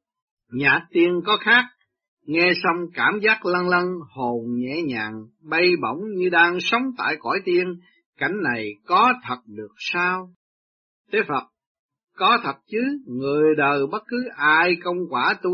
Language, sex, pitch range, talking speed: Vietnamese, male, 135-215 Hz, 155 wpm